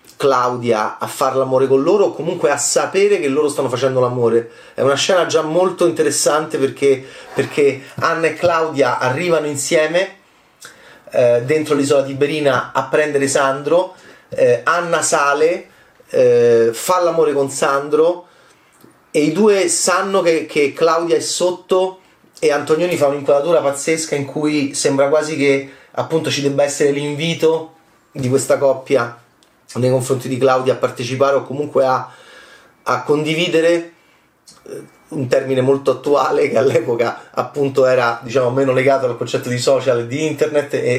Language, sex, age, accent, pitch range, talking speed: Italian, male, 30-49, native, 130-170 Hz, 150 wpm